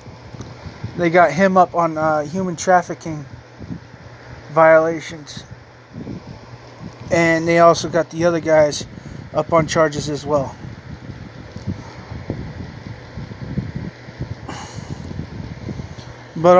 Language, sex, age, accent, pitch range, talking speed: English, male, 20-39, American, 130-175 Hz, 80 wpm